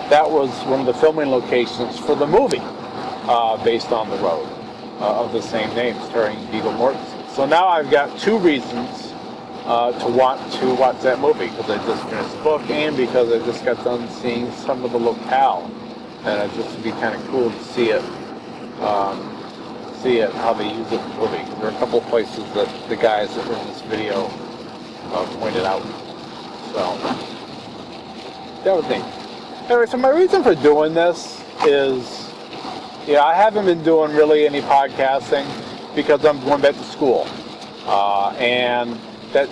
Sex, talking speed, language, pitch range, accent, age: male, 180 wpm, English, 120-150 Hz, American, 40-59